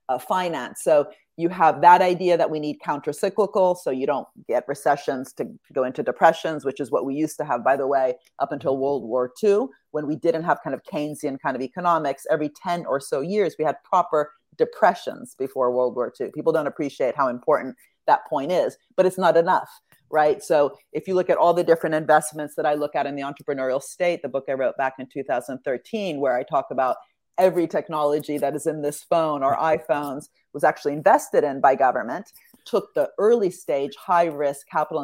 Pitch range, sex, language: 145-180 Hz, female, English